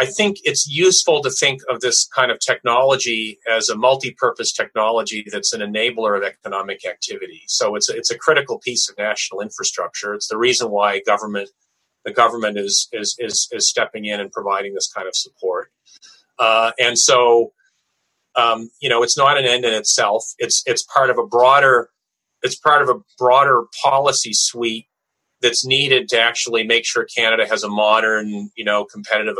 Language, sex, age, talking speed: English, male, 40-59, 180 wpm